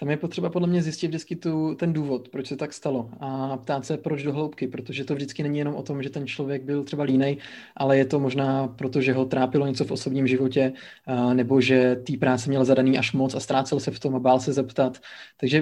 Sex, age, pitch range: male, 20-39, 130-145 Hz